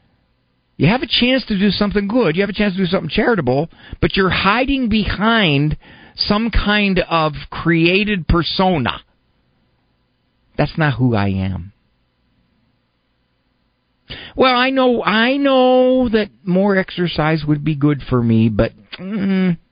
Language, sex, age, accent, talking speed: English, male, 50-69, American, 135 wpm